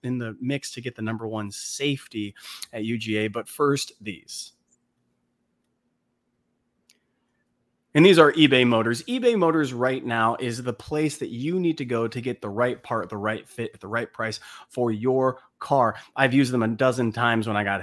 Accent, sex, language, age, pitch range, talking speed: American, male, English, 30-49, 115-150 Hz, 185 wpm